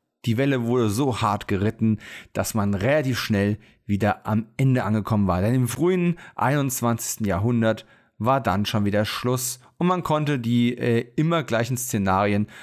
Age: 40-59